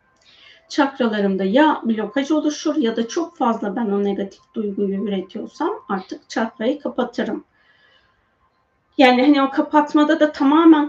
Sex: female